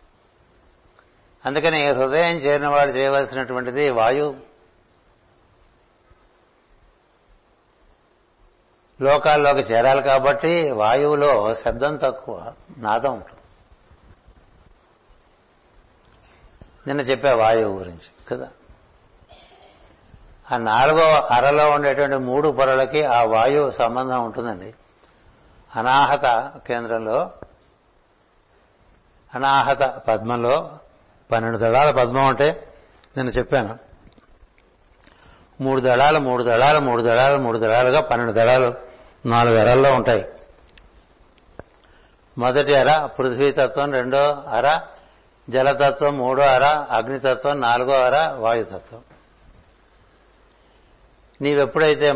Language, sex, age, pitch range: Telugu, male, 60-79, 115-140 Hz